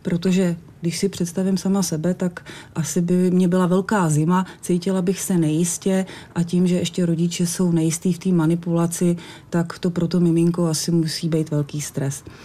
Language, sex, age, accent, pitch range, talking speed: Czech, female, 30-49, native, 170-195 Hz, 180 wpm